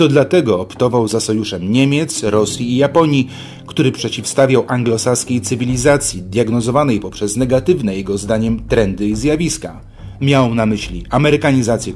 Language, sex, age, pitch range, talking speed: Polish, male, 30-49, 105-135 Hz, 125 wpm